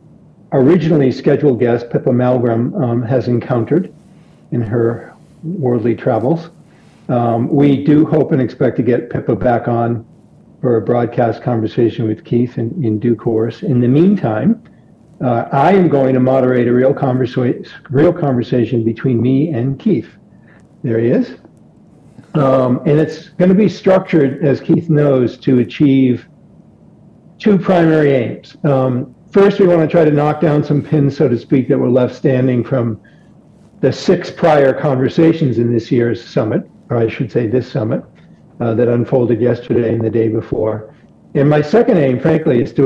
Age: 50-69